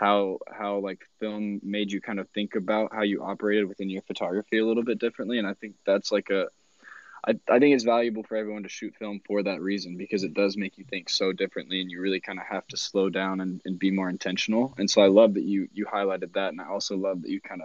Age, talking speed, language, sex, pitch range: 20-39, 260 wpm, English, male, 95-110 Hz